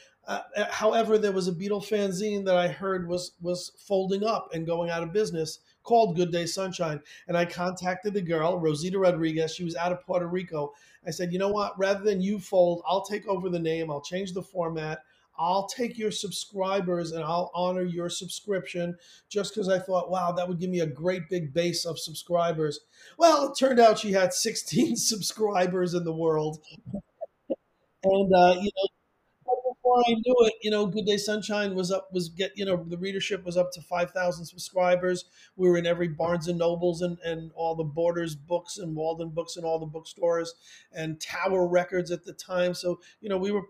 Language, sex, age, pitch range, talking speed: English, male, 40-59, 170-195 Hz, 200 wpm